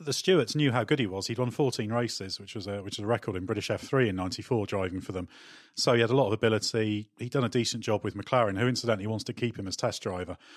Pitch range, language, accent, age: 100-115 Hz, English, British, 30-49